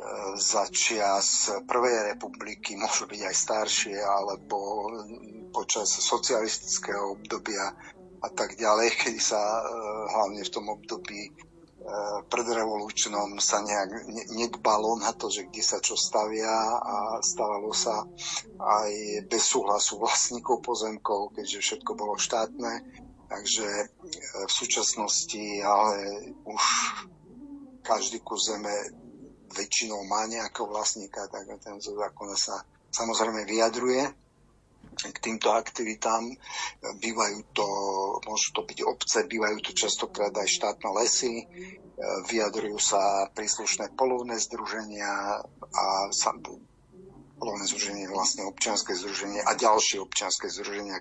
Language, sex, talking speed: Slovak, male, 110 wpm